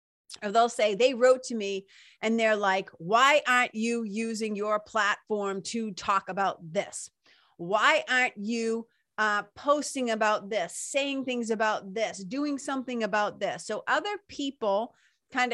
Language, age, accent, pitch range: English, 30-49, American, 200-255 Hz